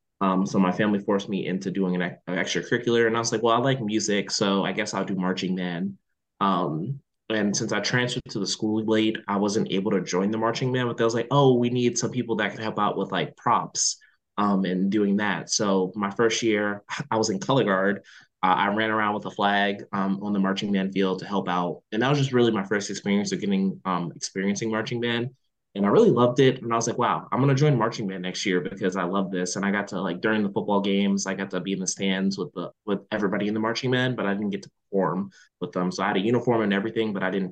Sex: male